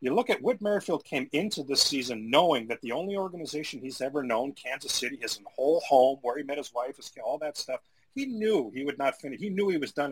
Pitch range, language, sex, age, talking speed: 135-205 Hz, English, male, 40-59, 255 wpm